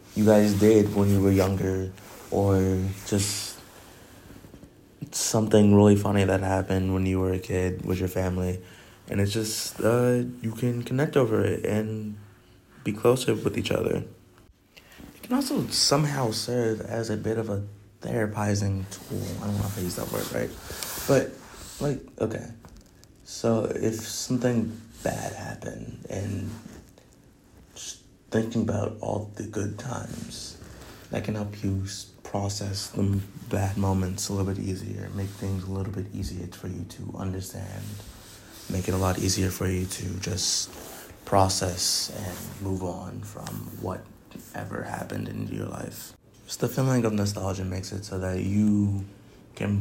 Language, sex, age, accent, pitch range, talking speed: English, male, 20-39, American, 95-110 Hz, 150 wpm